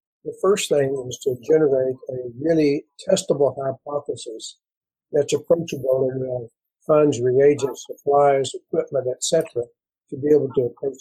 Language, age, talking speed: English, 60-79, 145 wpm